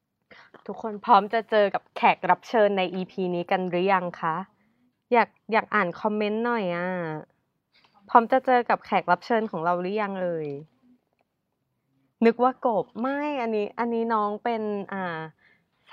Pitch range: 185-250 Hz